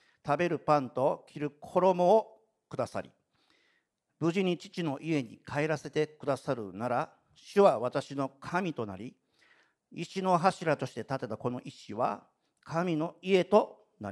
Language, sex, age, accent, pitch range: Japanese, male, 50-69, native, 130-170 Hz